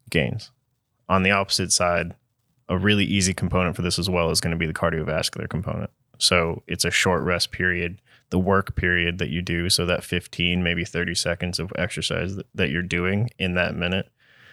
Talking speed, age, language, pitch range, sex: 190 wpm, 20-39, English, 85-105 Hz, male